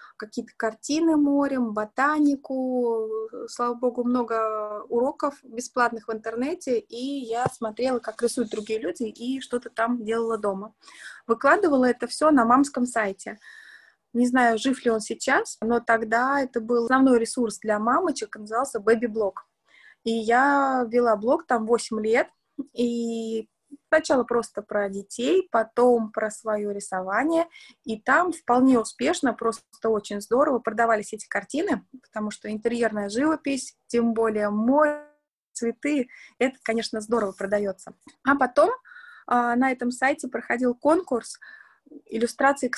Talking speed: 130 wpm